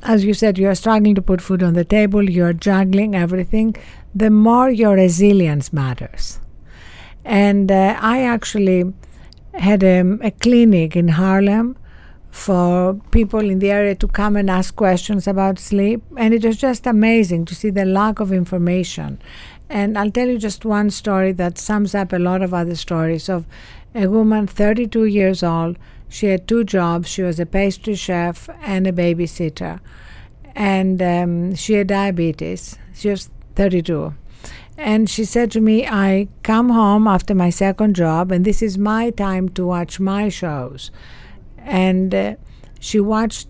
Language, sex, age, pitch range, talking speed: English, female, 60-79, 175-210 Hz, 165 wpm